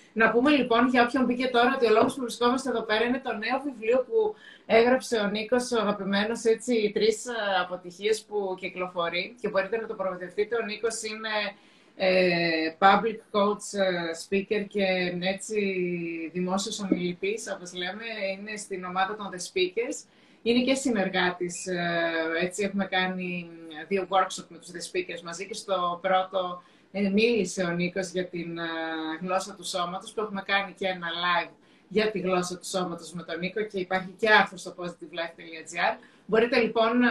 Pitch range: 180-220 Hz